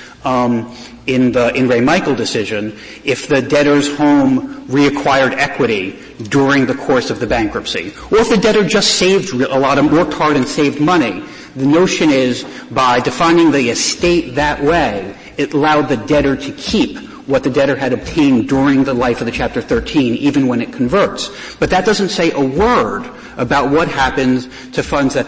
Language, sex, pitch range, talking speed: English, male, 130-165 Hz, 180 wpm